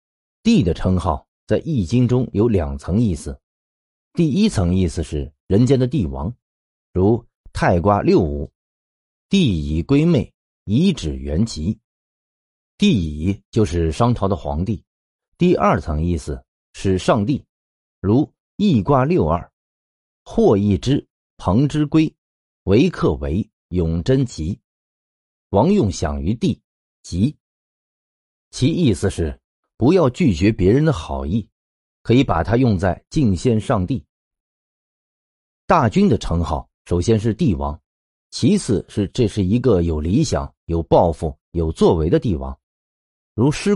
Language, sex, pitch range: Chinese, male, 70-120 Hz